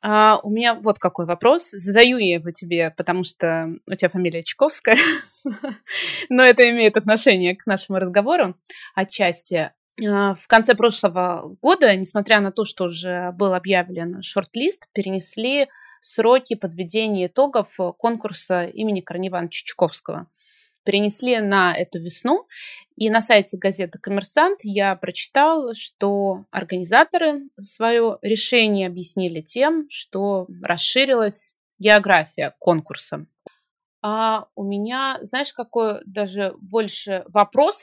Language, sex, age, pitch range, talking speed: Russian, female, 20-39, 185-235 Hz, 115 wpm